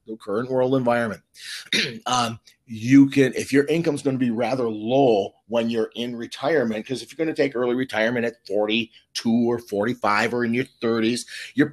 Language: English